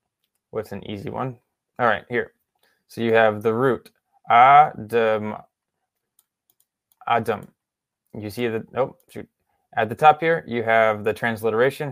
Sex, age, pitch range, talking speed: male, 20-39, 110-130 Hz, 140 wpm